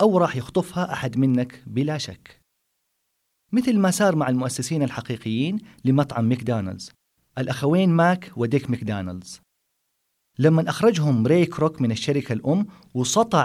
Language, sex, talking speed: Arabic, male, 120 wpm